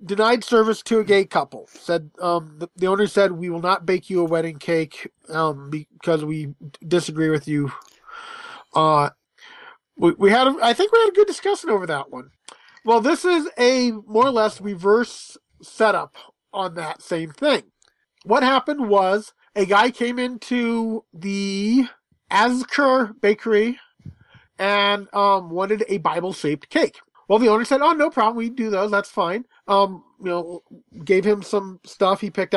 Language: English